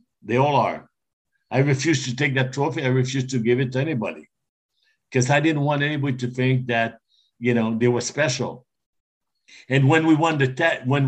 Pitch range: 125-160 Hz